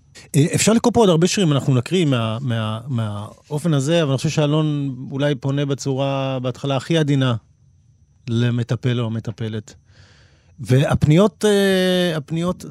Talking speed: 125 wpm